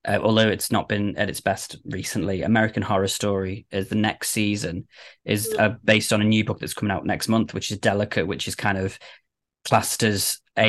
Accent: British